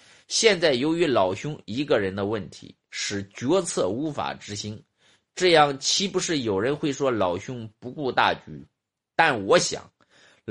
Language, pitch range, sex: Chinese, 125-195 Hz, male